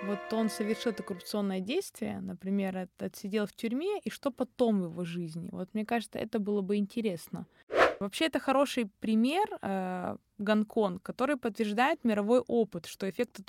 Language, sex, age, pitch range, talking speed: Russian, female, 20-39, 205-255 Hz, 160 wpm